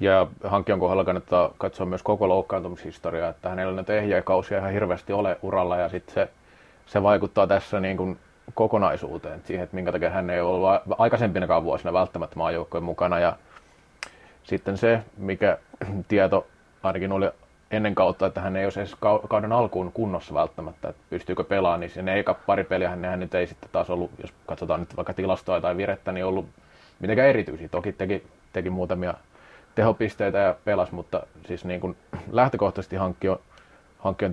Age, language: 30-49, Finnish